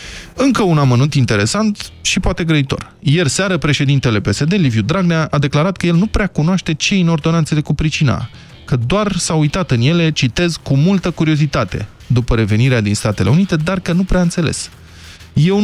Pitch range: 120-165 Hz